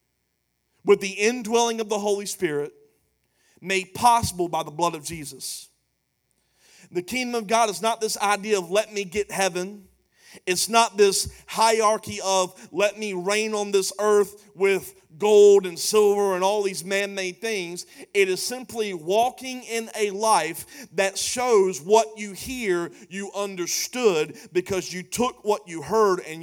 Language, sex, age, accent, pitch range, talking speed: English, male, 40-59, American, 185-220 Hz, 155 wpm